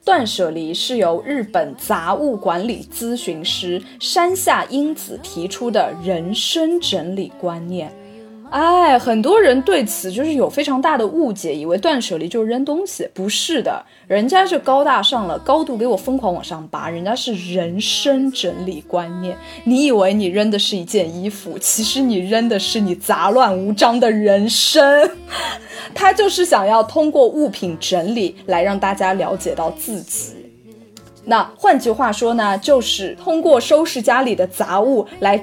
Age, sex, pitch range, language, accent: 20-39, female, 190-270 Hz, Chinese, native